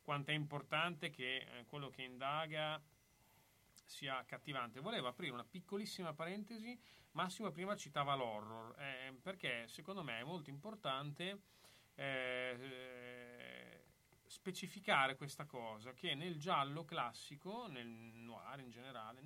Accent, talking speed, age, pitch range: native, 115 wpm, 30-49, 120-160 Hz